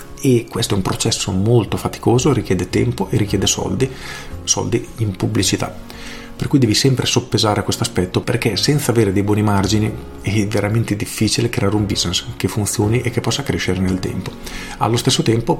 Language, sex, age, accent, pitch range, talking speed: Italian, male, 40-59, native, 100-120 Hz, 175 wpm